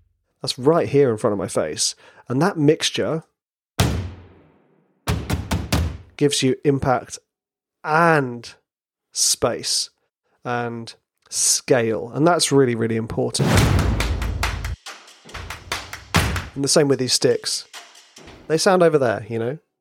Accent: British